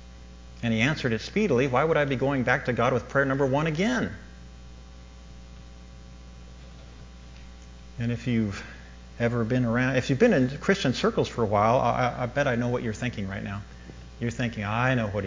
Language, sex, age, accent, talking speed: English, male, 50-69, American, 190 wpm